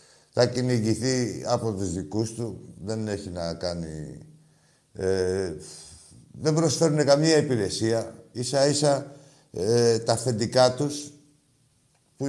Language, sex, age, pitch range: Greek, male, 60-79, 120-150 Hz